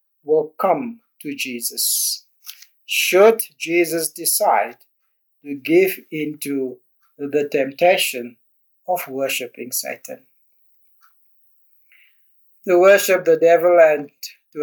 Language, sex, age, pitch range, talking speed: English, male, 60-79, 140-195 Hz, 85 wpm